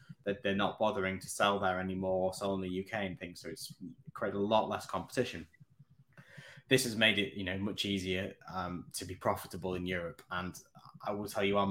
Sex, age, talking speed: male, 10-29, 210 wpm